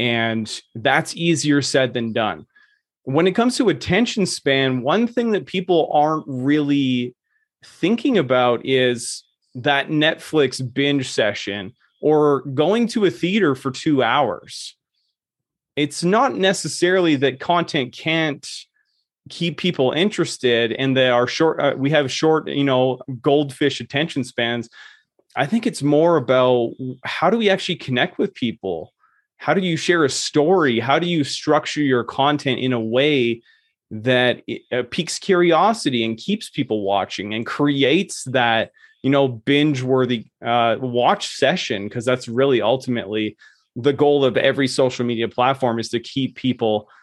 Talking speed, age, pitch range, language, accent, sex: 145 wpm, 30-49, 125-155 Hz, English, American, male